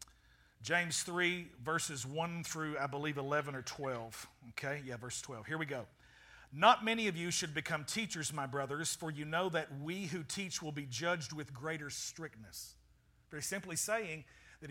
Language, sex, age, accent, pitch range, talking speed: English, male, 50-69, American, 150-185 Hz, 175 wpm